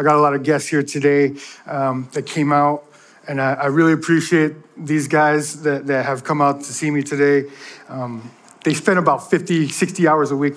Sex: male